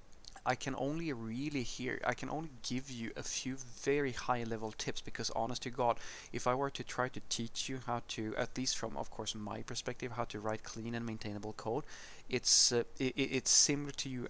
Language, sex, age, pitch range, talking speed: English, male, 30-49, 110-125 Hz, 210 wpm